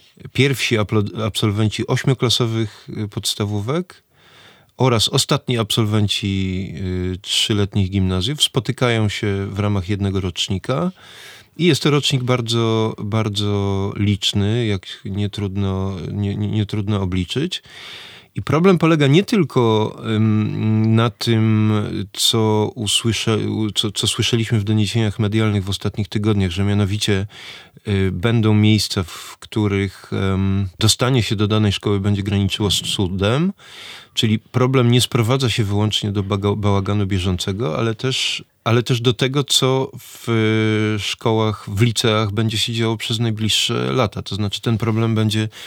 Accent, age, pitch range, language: native, 20-39, 100-120 Hz, Polish